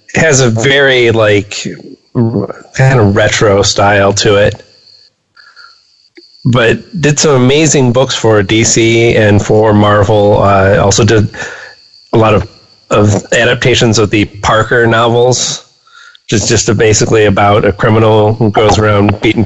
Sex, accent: male, American